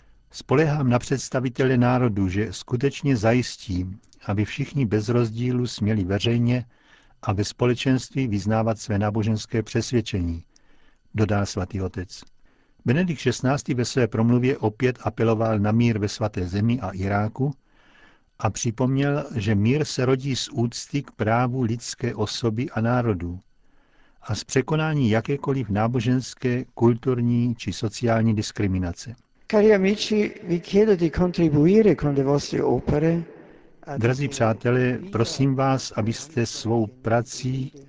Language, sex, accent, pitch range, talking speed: Czech, male, native, 110-135 Hz, 105 wpm